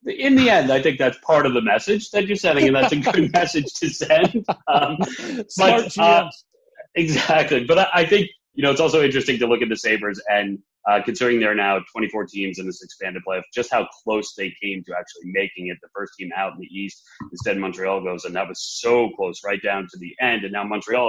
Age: 30-49